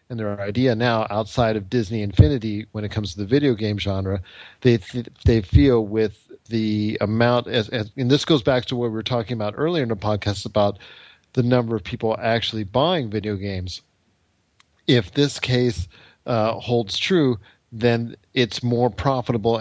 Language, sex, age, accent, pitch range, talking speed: English, male, 40-59, American, 105-120 Hz, 180 wpm